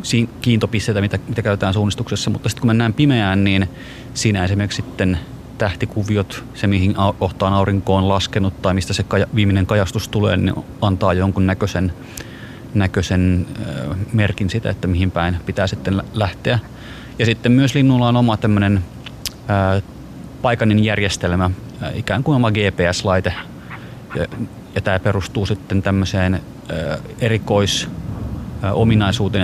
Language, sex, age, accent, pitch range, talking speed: Finnish, male, 30-49, native, 95-115 Hz, 130 wpm